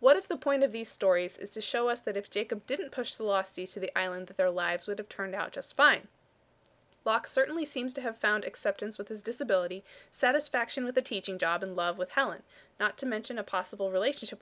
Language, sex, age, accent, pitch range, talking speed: English, female, 20-39, American, 190-245 Hz, 230 wpm